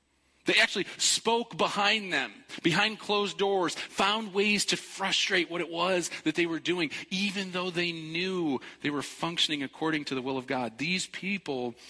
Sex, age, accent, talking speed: male, 40-59, American, 170 wpm